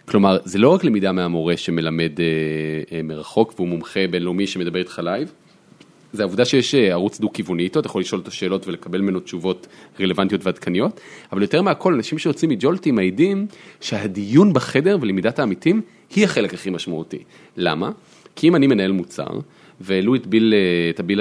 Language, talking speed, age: Hebrew, 160 wpm, 30-49